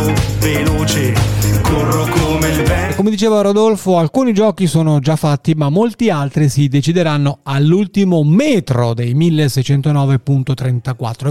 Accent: native